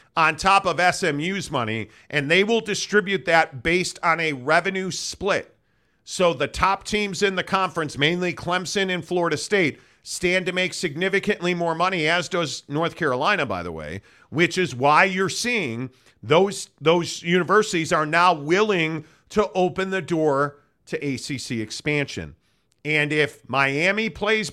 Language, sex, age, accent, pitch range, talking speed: English, male, 40-59, American, 150-190 Hz, 150 wpm